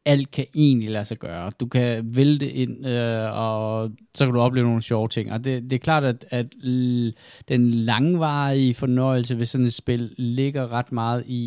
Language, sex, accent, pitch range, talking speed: Danish, male, native, 110-130 Hz, 200 wpm